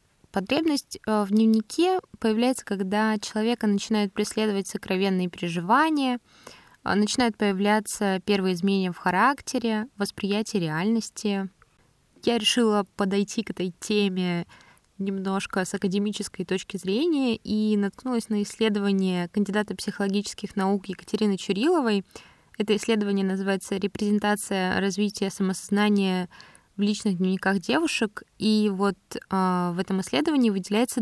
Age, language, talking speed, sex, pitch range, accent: 20-39, Russian, 105 wpm, female, 190-225 Hz, native